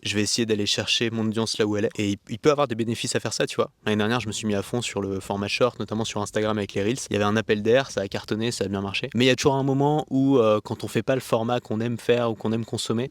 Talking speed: 350 wpm